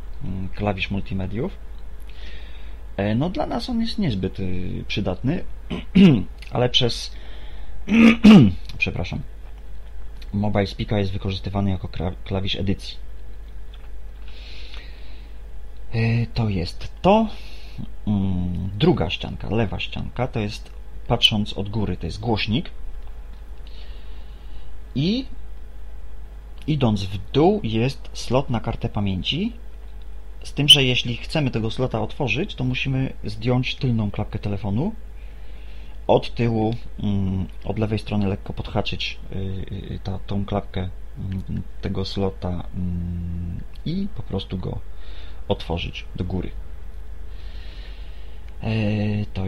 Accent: native